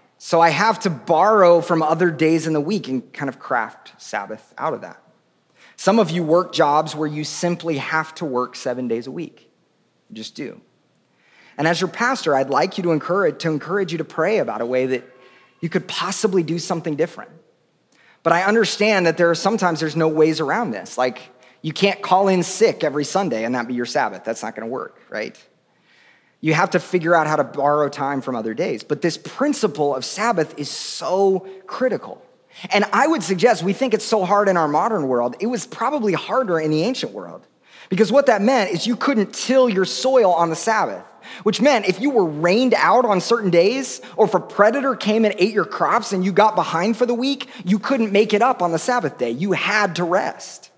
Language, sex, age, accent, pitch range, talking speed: English, male, 30-49, American, 155-215 Hz, 215 wpm